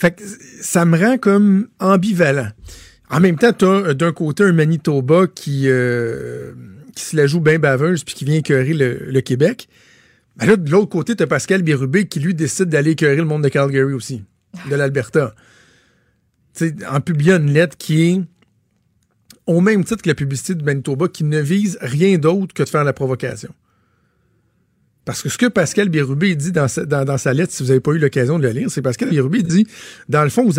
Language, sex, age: French, male, 50-69